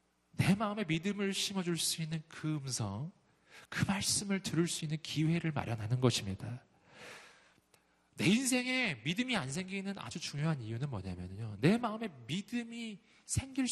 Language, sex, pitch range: Korean, male, 135-230 Hz